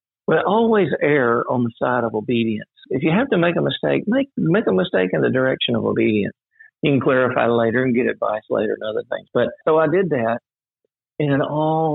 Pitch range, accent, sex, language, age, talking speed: 110-140 Hz, American, male, English, 50-69, 210 wpm